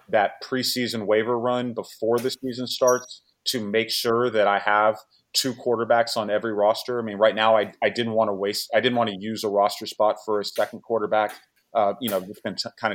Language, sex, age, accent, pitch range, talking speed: English, male, 30-49, American, 105-125 Hz, 225 wpm